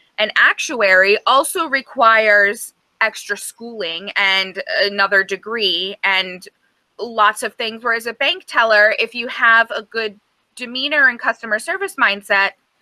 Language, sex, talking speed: English, female, 125 wpm